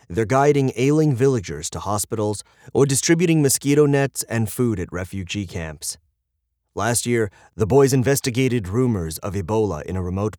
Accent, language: American, English